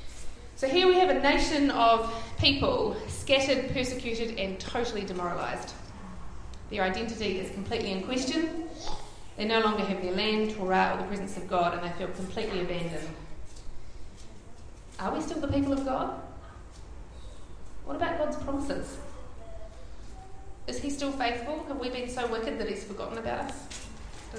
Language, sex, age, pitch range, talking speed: English, female, 30-49, 160-250 Hz, 155 wpm